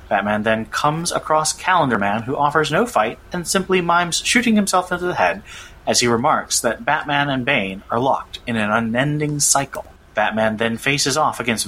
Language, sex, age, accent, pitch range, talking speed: English, male, 30-49, American, 110-155 Hz, 185 wpm